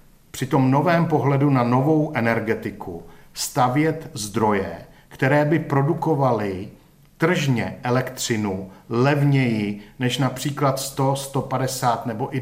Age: 50-69